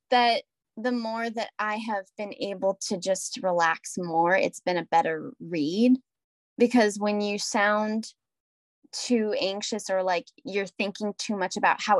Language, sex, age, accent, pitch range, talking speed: English, female, 10-29, American, 200-265 Hz, 155 wpm